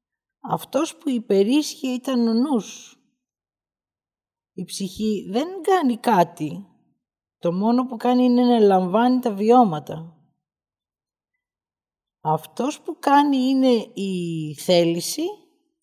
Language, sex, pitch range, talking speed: Greek, female, 160-250 Hz, 100 wpm